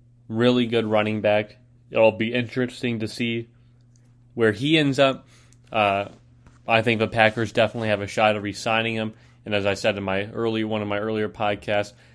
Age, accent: 20-39, American